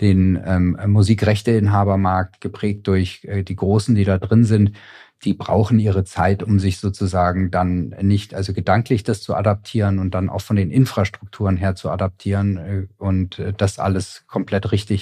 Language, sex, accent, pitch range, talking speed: German, male, German, 95-110 Hz, 170 wpm